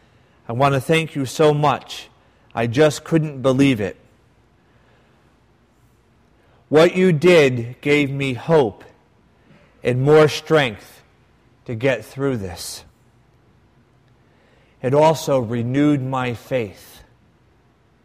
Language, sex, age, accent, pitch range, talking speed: English, male, 40-59, American, 115-140 Hz, 100 wpm